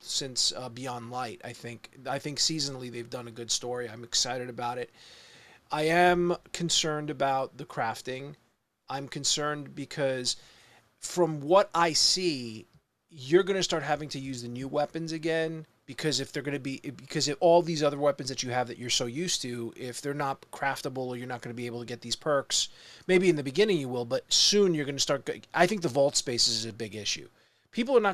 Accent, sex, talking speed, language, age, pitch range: American, male, 215 wpm, English, 30-49, 125-160 Hz